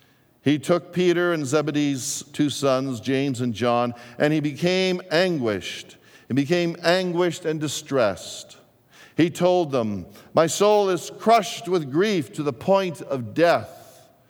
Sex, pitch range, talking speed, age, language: male, 110-155 Hz, 140 wpm, 50-69, English